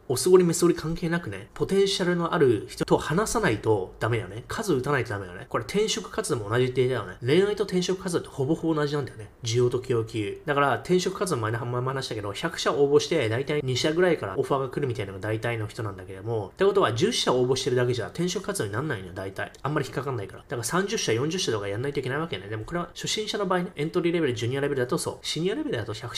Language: Japanese